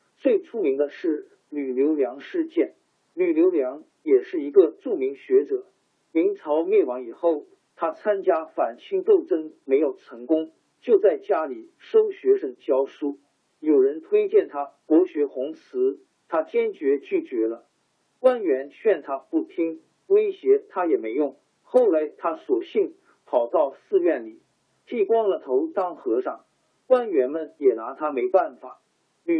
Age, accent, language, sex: 50-69, native, Chinese, male